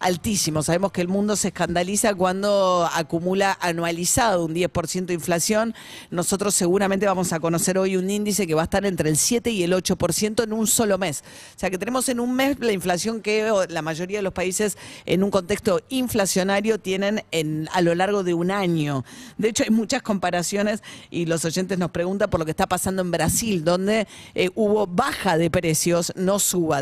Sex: female